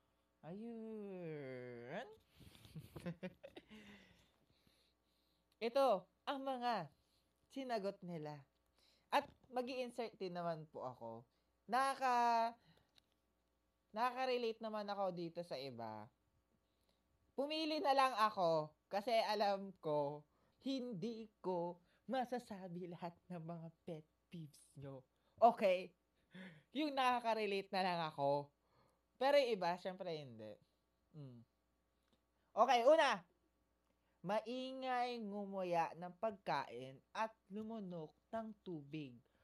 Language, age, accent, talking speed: Filipino, 20-39, native, 90 wpm